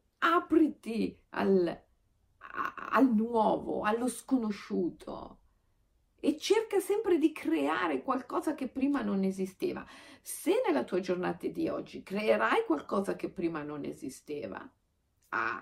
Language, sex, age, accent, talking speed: Italian, female, 50-69, native, 110 wpm